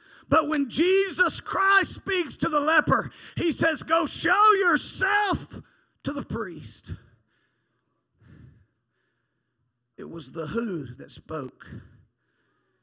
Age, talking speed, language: 40-59, 105 wpm, English